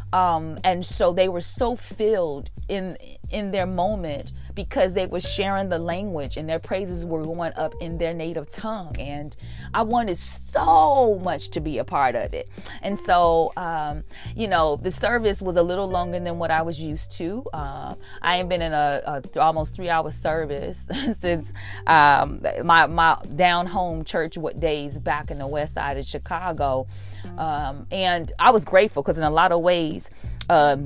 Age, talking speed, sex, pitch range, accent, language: 20-39, 185 wpm, female, 150-225 Hz, American, English